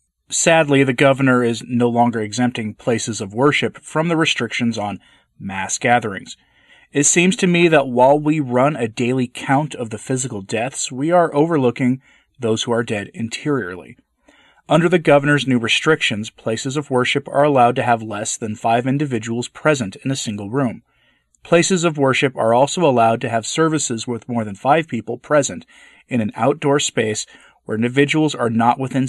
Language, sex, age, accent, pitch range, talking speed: English, male, 30-49, American, 115-140 Hz, 175 wpm